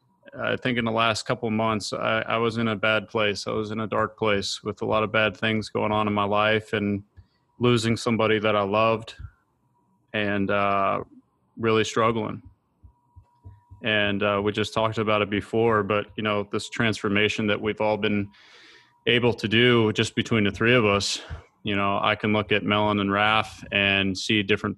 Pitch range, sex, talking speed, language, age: 100-110 Hz, male, 195 wpm, English, 20-39